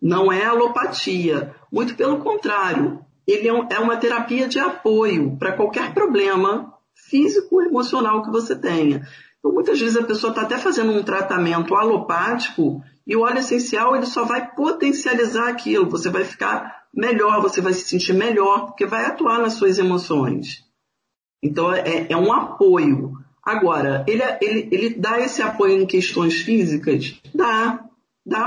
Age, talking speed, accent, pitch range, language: 40-59, 150 wpm, Brazilian, 170-240 Hz, Portuguese